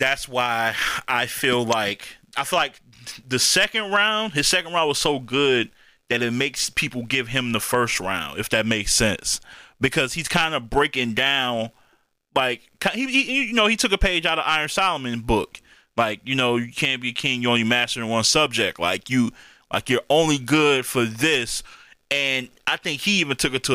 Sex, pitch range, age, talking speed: male, 115-145 Hz, 20-39, 200 wpm